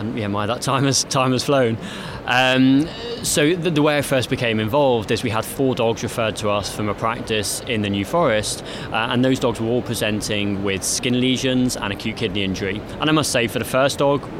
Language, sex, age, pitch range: English, male, 20-39, 105-125 Hz